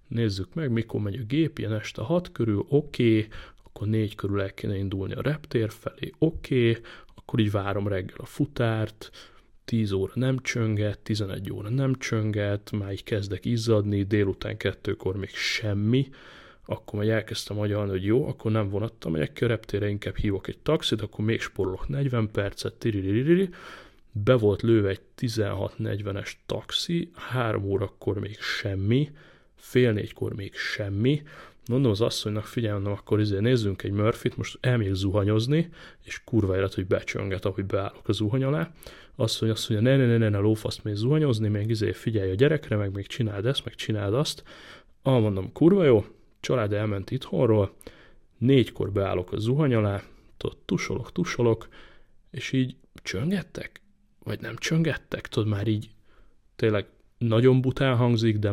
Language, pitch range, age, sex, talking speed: Hungarian, 100-125 Hz, 30-49, male, 155 wpm